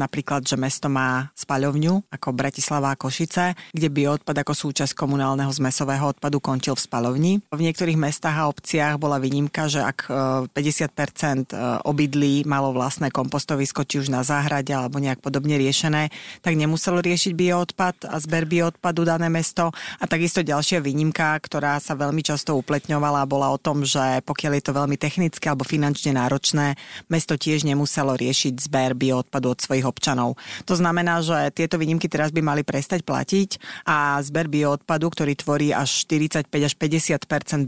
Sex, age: female, 30-49